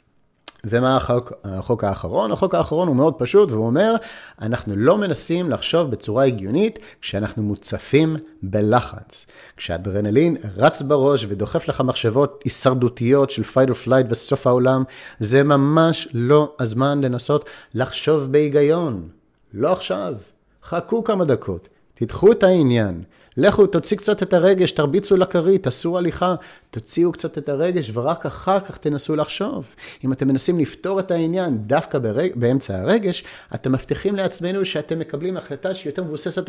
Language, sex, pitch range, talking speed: Hebrew, male, 125-185 Hz, 140 wpm